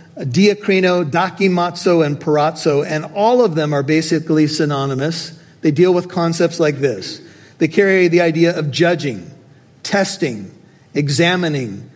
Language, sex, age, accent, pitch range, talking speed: English, male, 50-69, American, 155-190 Hz, 130 wpm